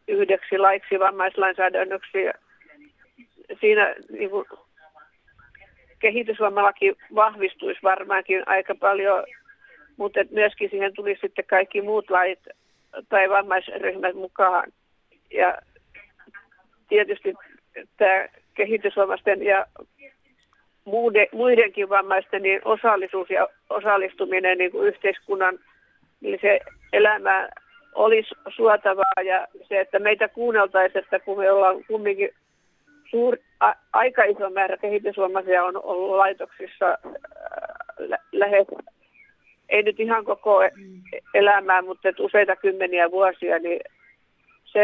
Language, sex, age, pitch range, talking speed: Finnish, female, 50-69, 190-265 Hz, 95 wpm